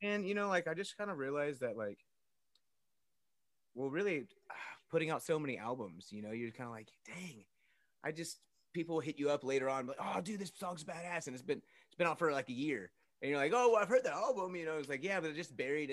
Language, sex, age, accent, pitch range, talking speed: English, male, 30-49, American, 115-160 Hz, 250 wpm